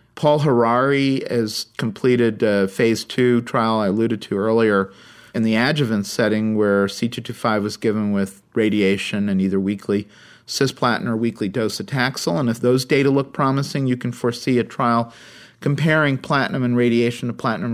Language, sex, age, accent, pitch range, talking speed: English, male, 40-59, American, 110-135 Hz, 160 wpm